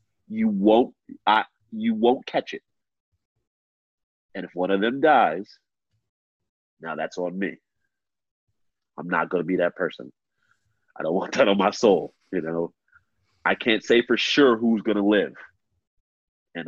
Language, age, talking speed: English, 30-49, 155 wpm